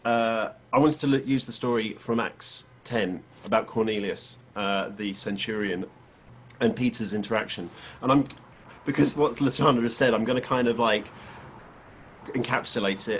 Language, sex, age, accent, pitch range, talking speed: English, male, 40-59, British, 105-125 Hz, 150 wpm